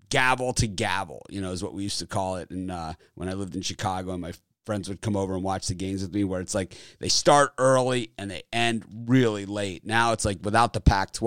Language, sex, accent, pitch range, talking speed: English, male, American, 95-120 Hz, 255 wpm